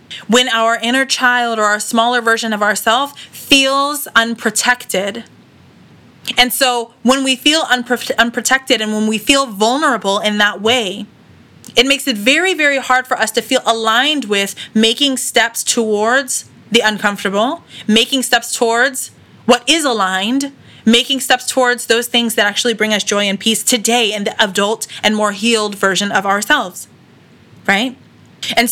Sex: female